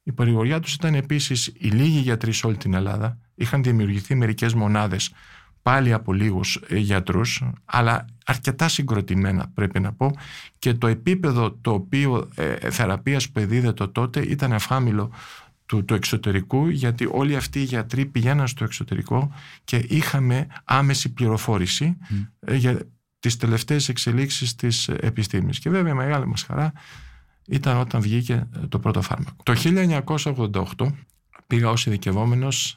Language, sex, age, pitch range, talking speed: Greek, male, 50-69, 105-135 Hz, 140 wpm